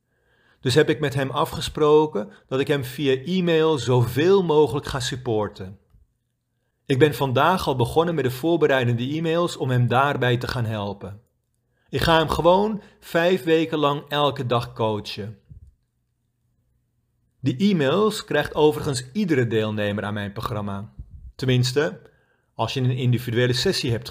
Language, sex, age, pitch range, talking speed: Dutch, male, 40-59, 115-150 Hz, 140 wpm